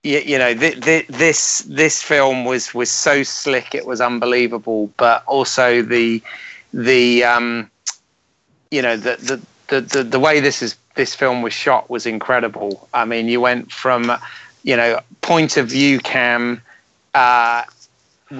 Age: 30-49